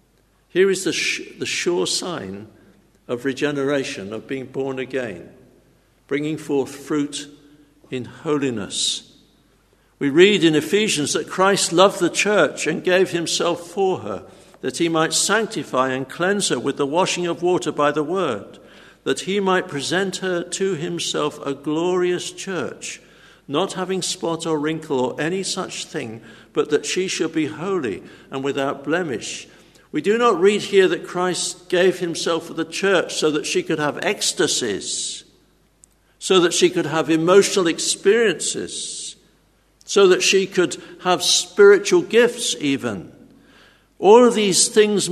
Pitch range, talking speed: 150-195 Hz, 150 wpm